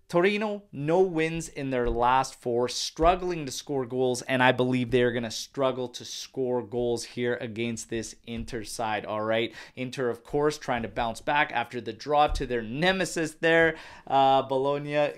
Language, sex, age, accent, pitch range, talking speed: English, male, 20-39, American, 120-140 Hz, 180 wpm